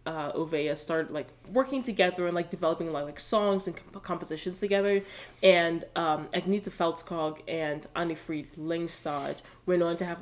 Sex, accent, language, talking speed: female, American, English, 160 wpm